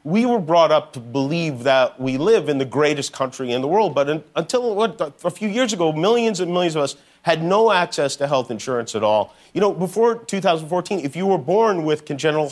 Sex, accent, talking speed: male, American, 225 wpm